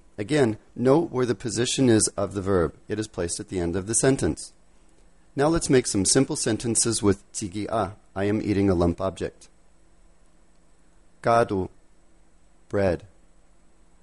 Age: 40-59